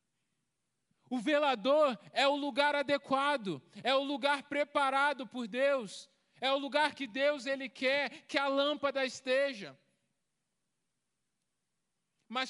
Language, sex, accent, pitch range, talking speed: Portuguese, male, Brazilian, 185-255 Hz, 115 wpm